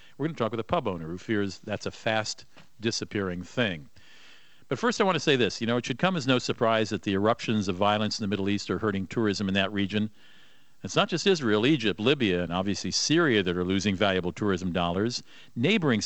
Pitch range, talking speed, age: 95-115 Hz, 225 wpm, 50-69